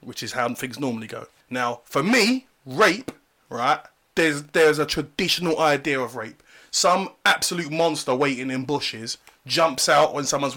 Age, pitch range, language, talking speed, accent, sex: 20-39, 135-220 Hz, English, 160 wpm, British, male